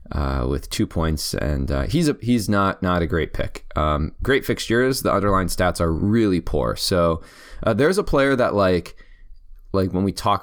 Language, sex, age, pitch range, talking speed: English, male, 20-39, 80-100 Hz, 195 wpm